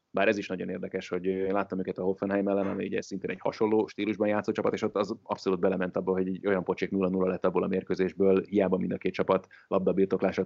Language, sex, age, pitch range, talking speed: Hungarian, male, 30-49, 95-115 Hz, 235 wpm